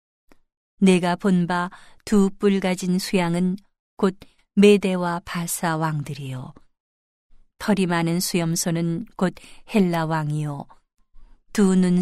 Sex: female